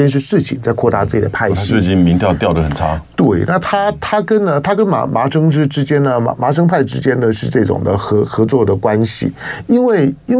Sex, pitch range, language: male, 110-145 Hz, Chinese